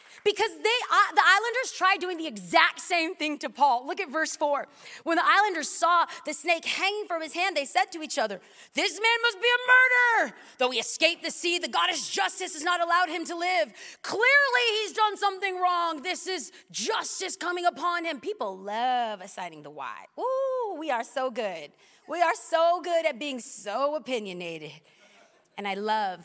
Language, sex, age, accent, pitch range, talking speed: English, female, 30-49, American, 270-390 Hz, 190 wpm